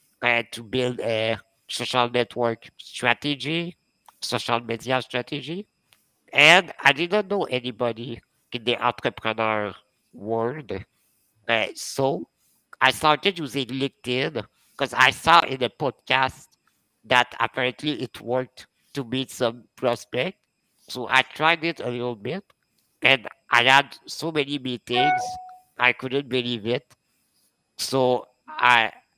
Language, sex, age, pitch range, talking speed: English, male, 60-79, 115-140 Hz, 125 wpm